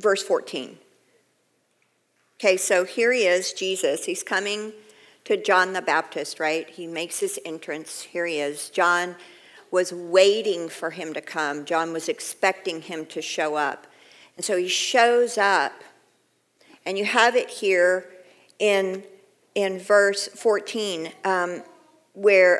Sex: female